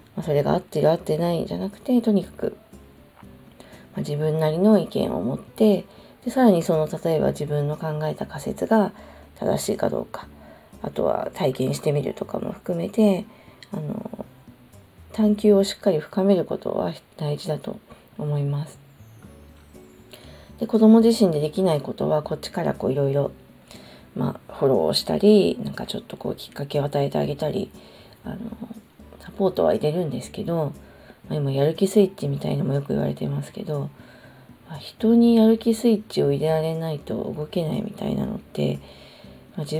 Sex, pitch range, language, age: female, 145-205 Hz, Japanese, 40-59